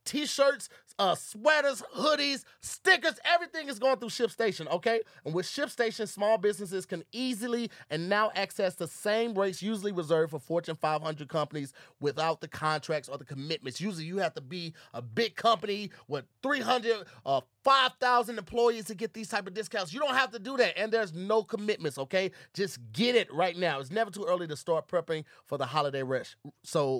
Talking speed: 185 wpm